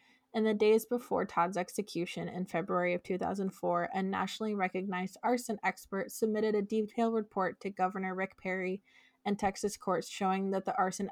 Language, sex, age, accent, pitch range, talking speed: English, female, 20-39, American, 185-215 Hz, 160 wpm